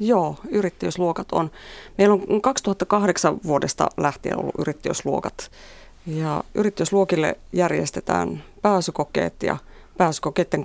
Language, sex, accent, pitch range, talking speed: Finnish, female, native, 155-185 Hz, 85 wpm